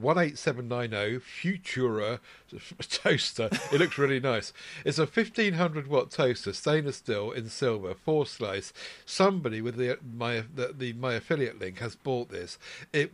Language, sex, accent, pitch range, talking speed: English, male, British, 120-155 Hz, 165 wpm